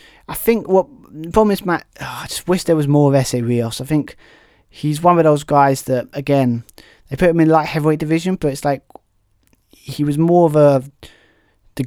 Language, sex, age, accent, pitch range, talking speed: English, male, 20-39, British, 130-155 Hz, 210 wpm